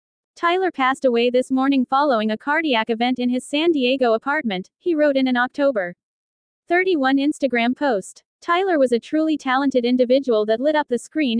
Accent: American